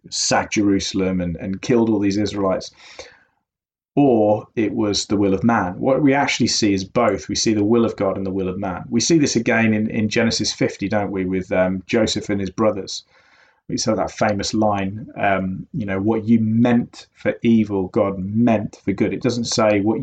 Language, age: English, 30-49